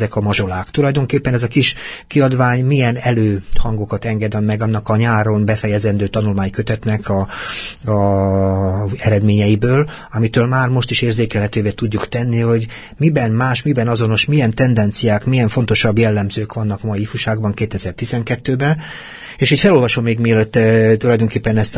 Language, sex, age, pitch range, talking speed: Hungarian, male, 30-49, 105-125 Hz, 135 wpm